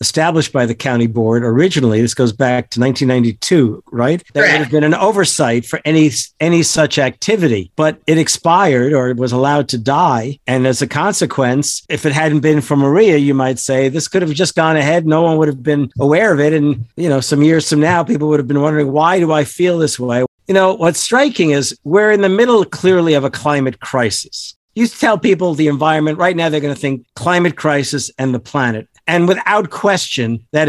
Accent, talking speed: American, 215 wpm